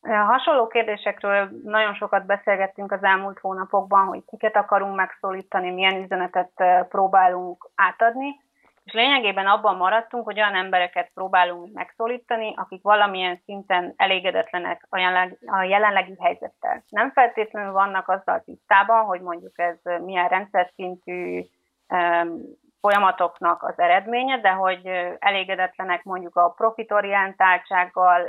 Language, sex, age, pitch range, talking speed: Hungarian, female, 30-49, 180-210 Hz, 110 wpm